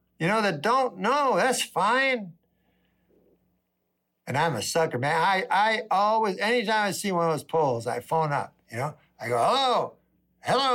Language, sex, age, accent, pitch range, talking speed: English, male, 60-79, American, 130-210 Hz, 175 wpm